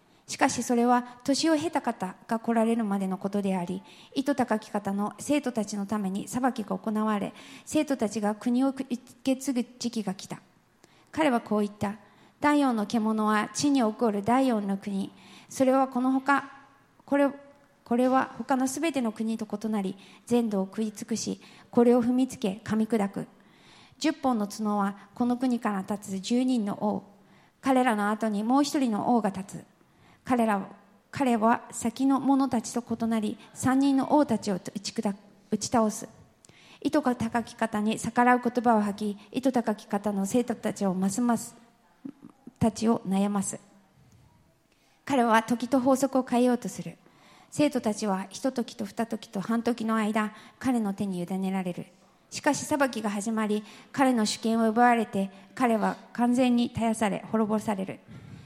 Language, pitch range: English, 210-255 Hz